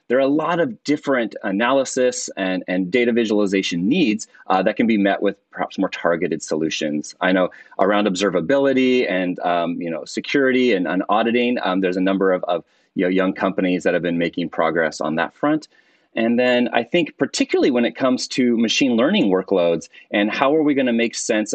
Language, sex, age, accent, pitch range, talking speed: English, male, 30-49, American, 90-130 Hz, 190 wpm